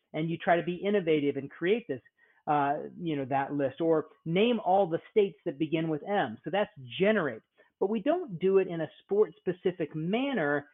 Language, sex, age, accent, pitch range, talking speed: English, male, 40-59, American, 155-200 Hz, 200 wpm